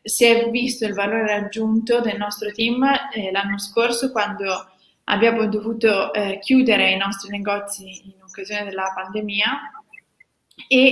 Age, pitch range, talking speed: 20-39, 200-230 Hz, 135 wpm